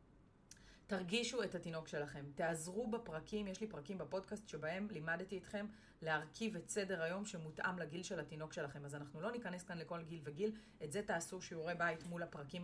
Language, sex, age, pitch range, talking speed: Hebrew, female, 30-49, 155-210 Hz, 175 wpm